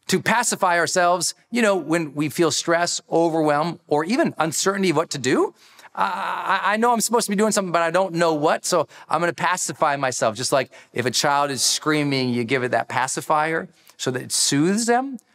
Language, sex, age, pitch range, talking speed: English, male, 40-59, 120-170 Hz, 210 wpm